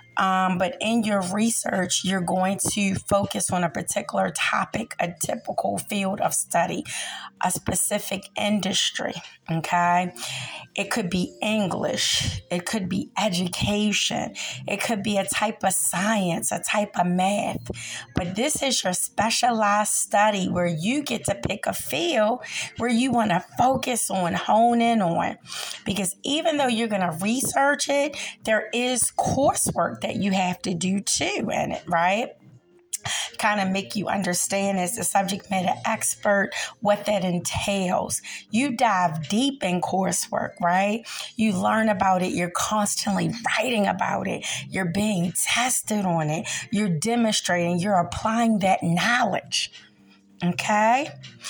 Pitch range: 185-225 Hz